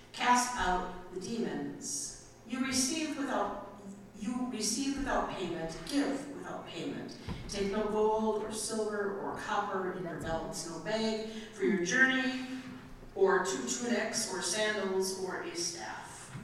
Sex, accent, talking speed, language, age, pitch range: female, American, 135 wpm, English, 50-69, 190-240 Hz